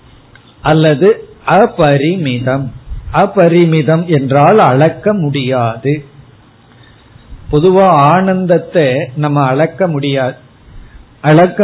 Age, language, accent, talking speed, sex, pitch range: 50-69, Tamil, native, 60 wpm, male, 140-180 Hz